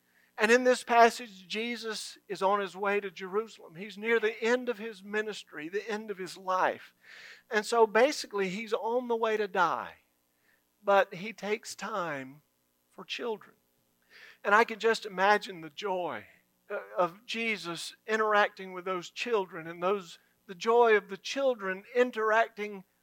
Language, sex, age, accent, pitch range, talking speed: English, male, 50-69, American, 170-220 Hz, 155 wpm